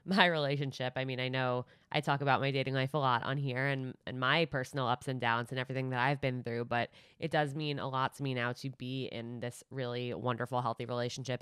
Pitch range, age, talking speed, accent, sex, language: 130-165 Hz, 20-39, 240 wpm, American, female, English